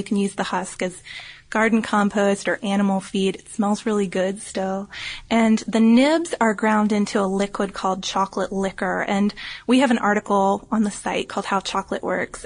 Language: English